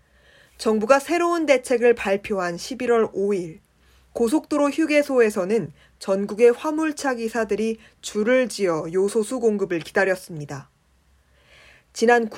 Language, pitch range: Korean, 200-260 Hz